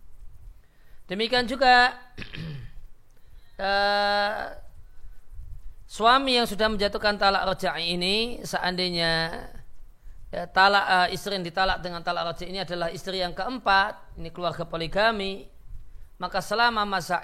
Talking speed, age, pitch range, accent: 105 wpm, 40-59, 155-200 Hz, native